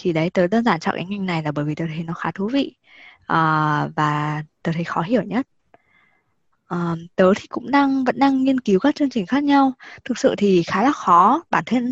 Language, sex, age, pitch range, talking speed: Vietnamese, female, 20-39, 175-255 Hz, 235 wpm